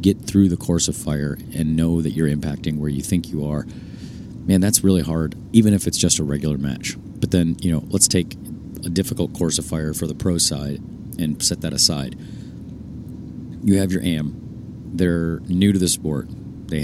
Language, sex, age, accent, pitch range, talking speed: English, male, 40-59, American, 80-95 Hz, 200 wpm